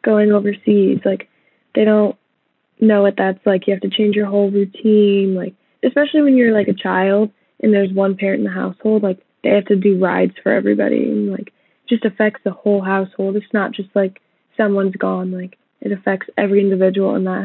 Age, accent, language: 10-29, American, English